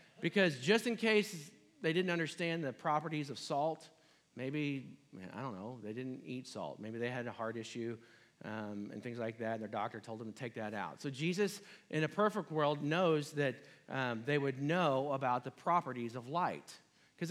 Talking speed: 200 wpm